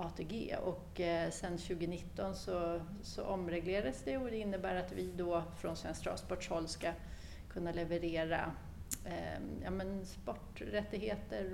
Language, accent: Swedish, native